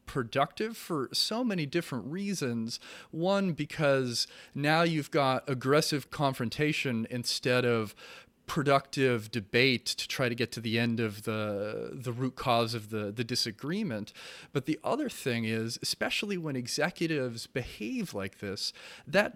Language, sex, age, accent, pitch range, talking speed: English, male, 30-49, American, 120-165 Hz, 140 wpm